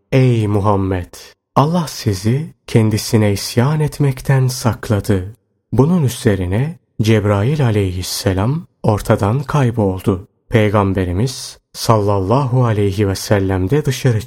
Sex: male